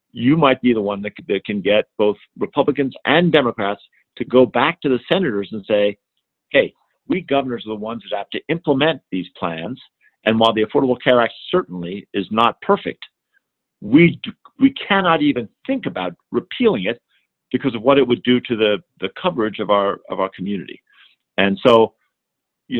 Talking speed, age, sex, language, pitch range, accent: 180 wpm, 50-69, male, English, 105-135 Hz, American